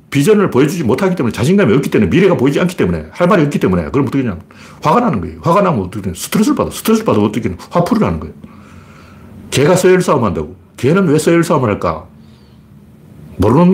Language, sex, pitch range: Korean, male, 115-185 Hz